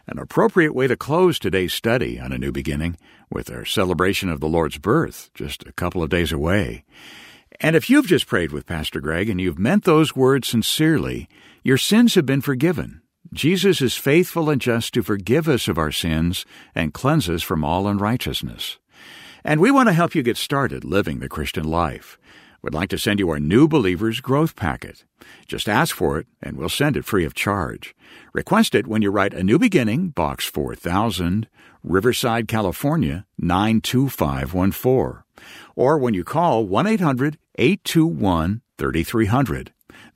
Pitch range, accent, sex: 85-140 Hz, American, male